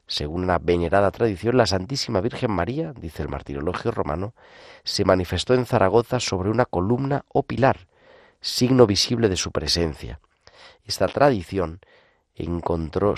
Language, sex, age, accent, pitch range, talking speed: Spanish, male, 40-59, Spanish, 85-110 Hz, 130 wpm